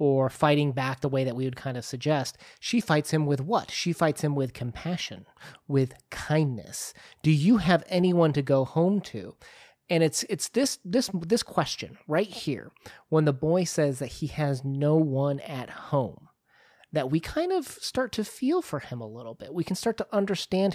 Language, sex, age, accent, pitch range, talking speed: English, male, 30-49, American, 135-180 Hz, 195 wpm